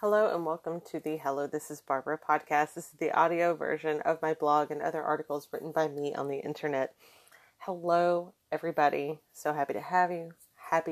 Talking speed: 190 wpm